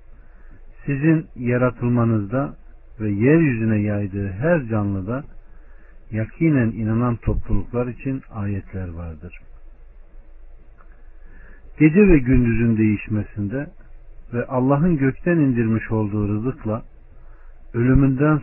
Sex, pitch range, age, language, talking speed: male, 95-120 Hz, 50-69, Turkish, 80 wpm